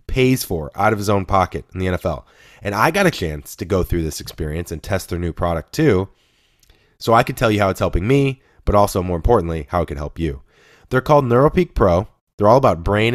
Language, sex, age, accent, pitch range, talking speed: English, male, 20-39, American, 85-110 Hz, 235 wpm